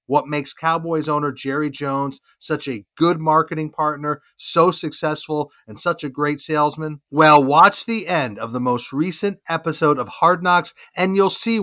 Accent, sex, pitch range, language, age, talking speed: American, male, 140-170 Hz, English, 40-59, 170 wpm